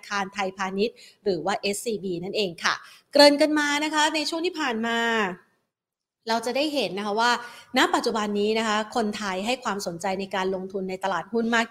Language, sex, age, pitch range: Thai, female, 30-49, 200-245 Hz